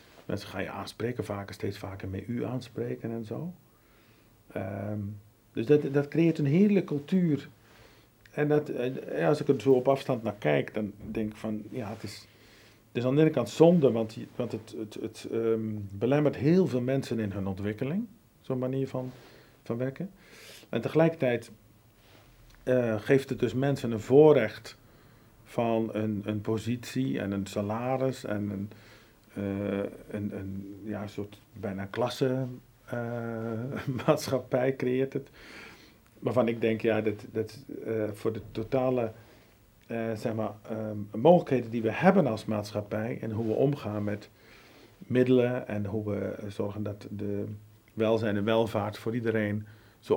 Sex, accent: male, Dutch